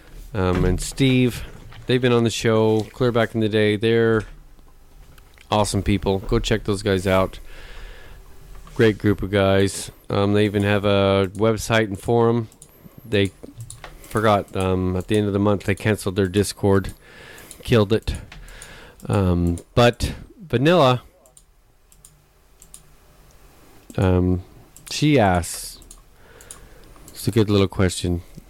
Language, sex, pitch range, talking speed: English, male, 95-115 Hz, 125 wpm